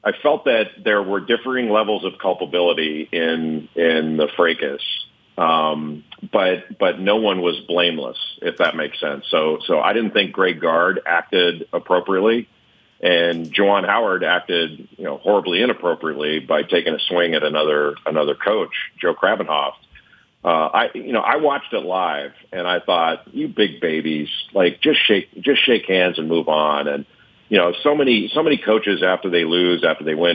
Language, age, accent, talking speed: English, 50-69, American, 175 wpm